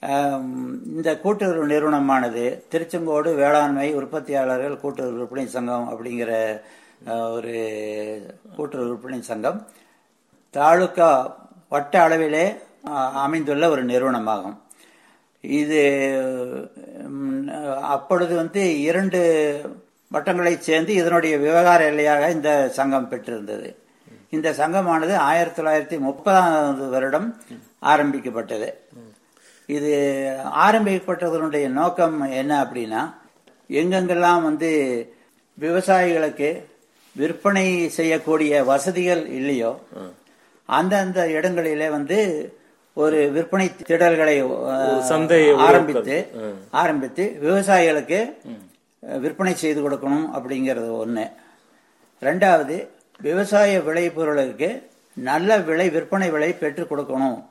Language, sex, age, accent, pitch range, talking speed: Tamil, male, 60-79, native, 135-170 Hz, 80 wpm